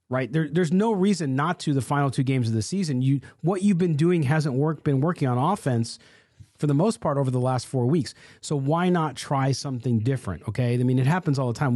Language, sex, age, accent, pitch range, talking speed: English, male, 40-59, American, 125-175 Hz, 245 wpm